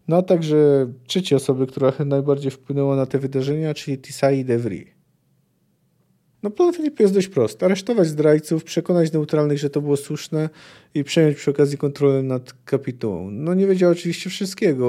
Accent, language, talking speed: native, Polish, 170 wpm